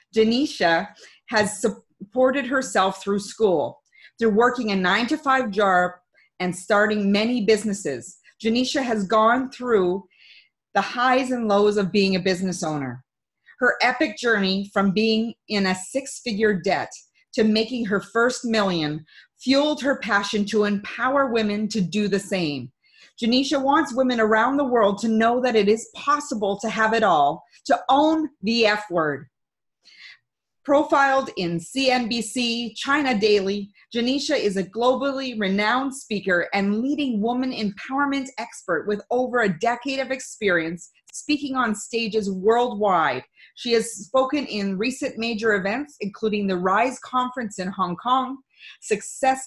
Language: English